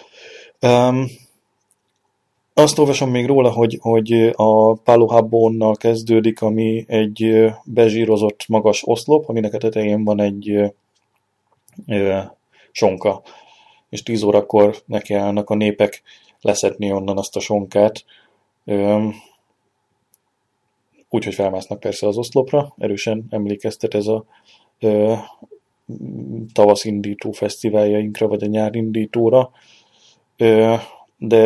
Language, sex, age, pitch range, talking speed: Hungarian, male, 20-39, 105-115 Hz, 95 wpm